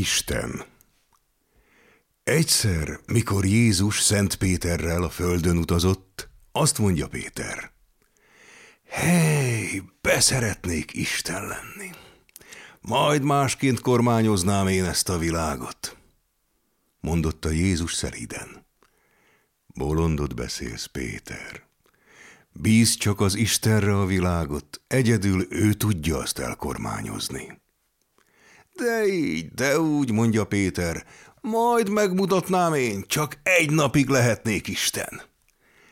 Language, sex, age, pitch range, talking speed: Hungarian, male, 60-79, 85-125 Hz, 90 wpm